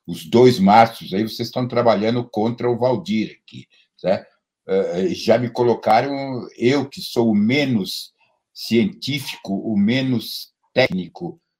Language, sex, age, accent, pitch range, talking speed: Portuguese, male, 60-79, Brazilian, 110-160 Hz, 120 wpm